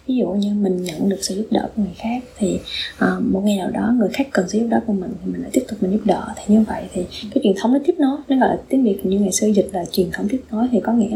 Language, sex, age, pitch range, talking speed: Vietnamese, female, 20-39, 200-240 Hz, 330 wpm